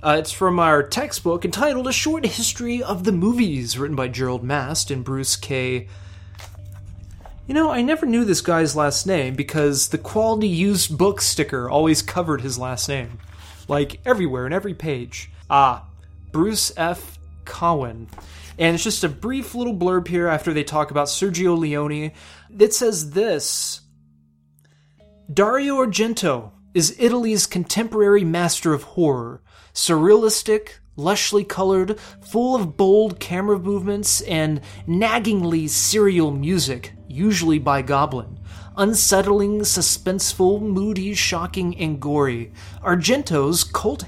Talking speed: 130 wpm